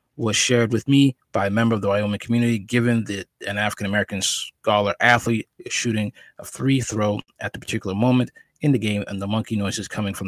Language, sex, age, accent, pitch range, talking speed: English, male, 20-39, American, 100-120 Hz, 210 wpm